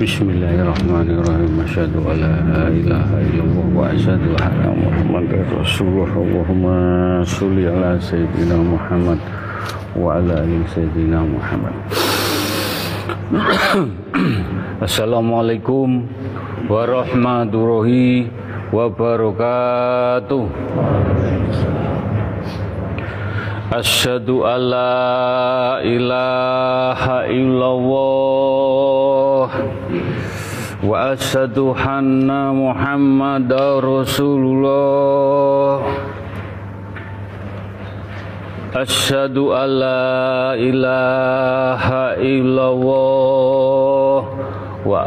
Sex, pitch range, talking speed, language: male, 100-135 Hz, 40 wpm, Indonesian